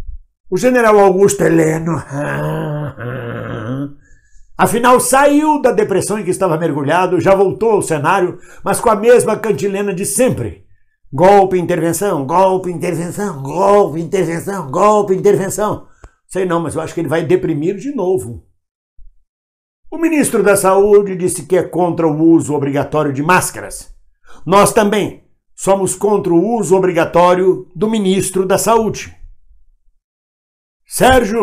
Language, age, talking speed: Portuguese, 60-79, 130 wpm